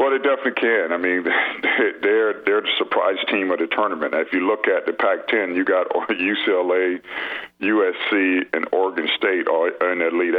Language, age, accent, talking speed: English, 50-69, American, 165 wpm